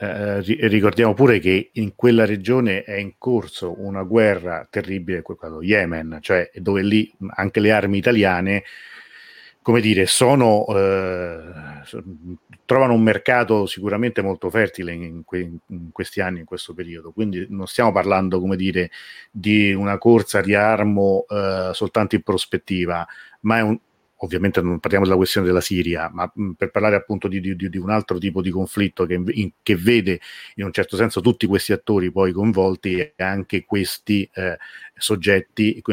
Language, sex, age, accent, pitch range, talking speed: Italian, male, 40-59, native, 95-110 Hz, 160 wpm